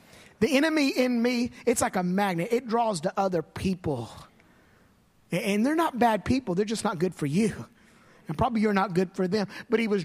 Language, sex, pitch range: English, male, 195-275 Hz